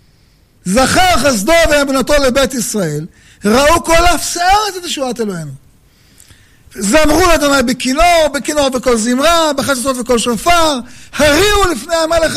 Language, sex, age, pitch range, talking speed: Hebrew, male, 50-69, 200-280 Hz, 115 wpm